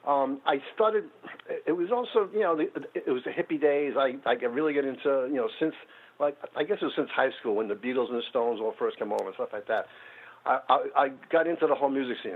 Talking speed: 255 wpm